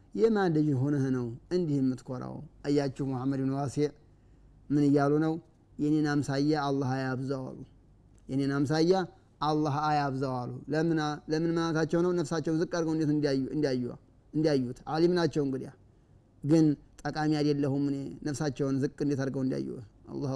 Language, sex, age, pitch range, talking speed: Amharic, male, 30-49, 135-165 Hz, 125 wpm